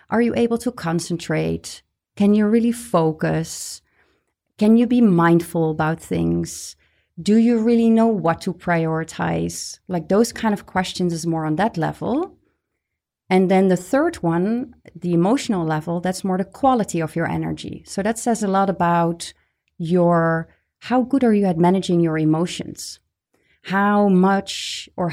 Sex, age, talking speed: female, 30-49, 155 wpm